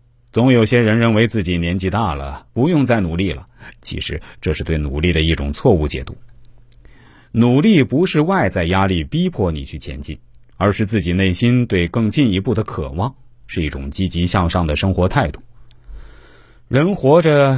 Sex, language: male, Chinese